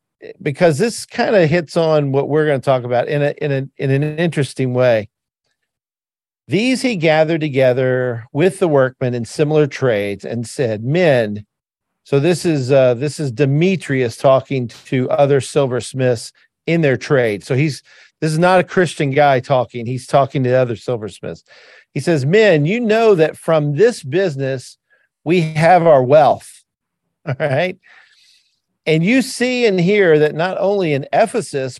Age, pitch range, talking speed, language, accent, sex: 50-69, 130-180 Hz, 160 wpm, English, American, male